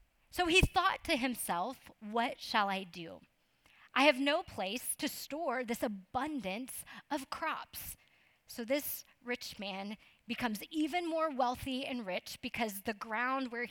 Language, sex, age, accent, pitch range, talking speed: English, female, 30-49, American, 215-280 Hz, 145 wpm